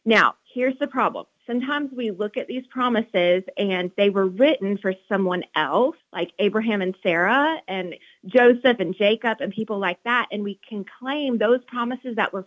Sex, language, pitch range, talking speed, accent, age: female, English, 190-245 Hz, 180 wpm, American, 30-49